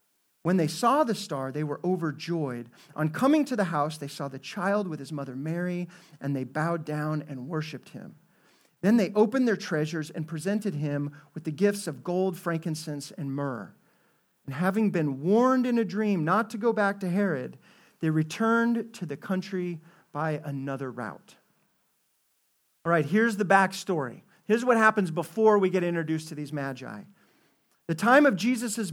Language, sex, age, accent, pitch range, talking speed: English, male, 40-59, American, 150-205 Hz, 175 wpm